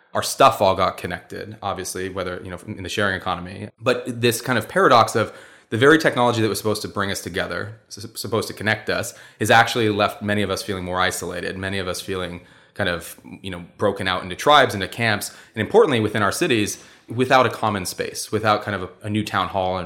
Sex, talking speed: male, 225 wpm